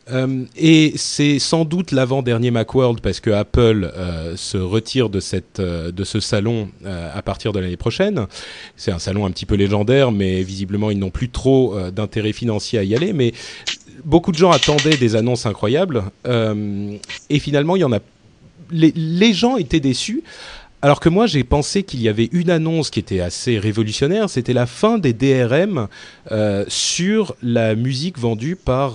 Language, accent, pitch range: French, French, 100-140 Hz